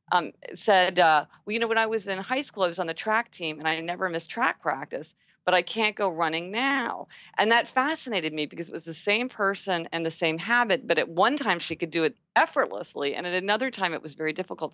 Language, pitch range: English, 165-220 Hz